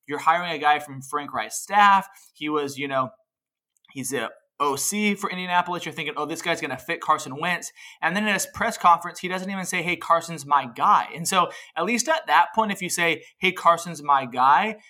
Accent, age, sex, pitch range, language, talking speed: American, 20-39, male, 150-185 Hz, English, 220 wpm